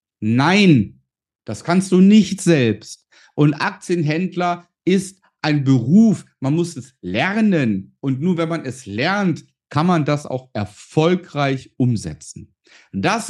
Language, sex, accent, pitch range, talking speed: German, male, German, 130-190 Hz, 125 wpm